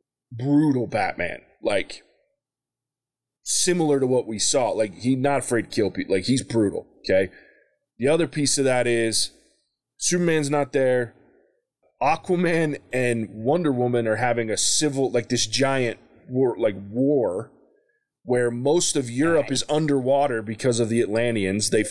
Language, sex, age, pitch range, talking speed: English, male, 20-39, 115-145 Hz, 145 wpm